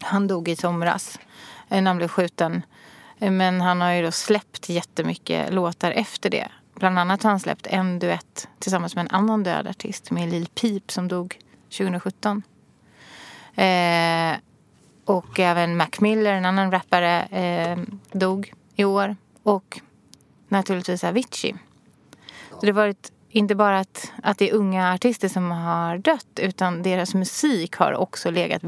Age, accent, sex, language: 30-49, Swedish, female, English